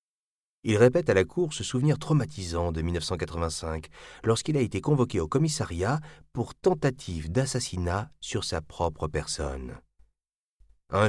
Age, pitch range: 40-59, 80-115 Hz